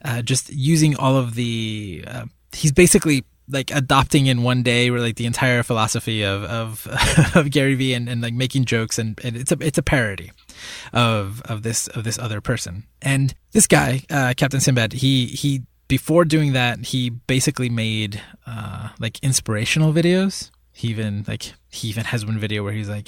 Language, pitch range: English, 110-140 Hz